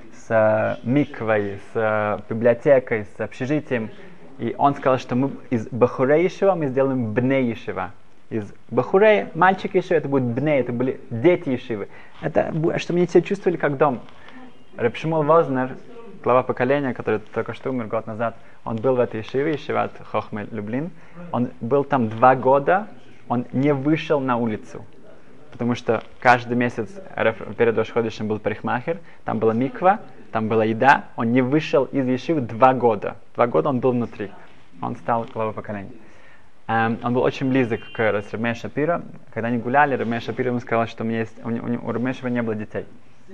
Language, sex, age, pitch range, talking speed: Russian, male, 20-39, 110-140 Hz, 155 wpm